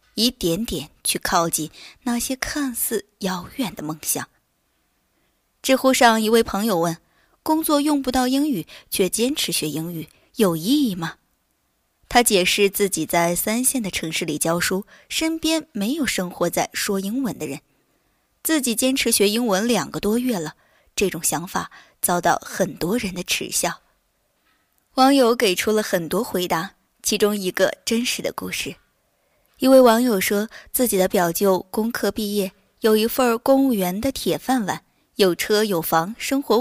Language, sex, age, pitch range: Chinese, female, 20-39, 180-255 Hz